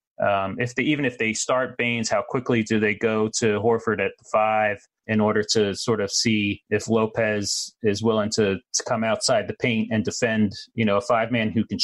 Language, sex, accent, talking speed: English, male, American, 215 wpm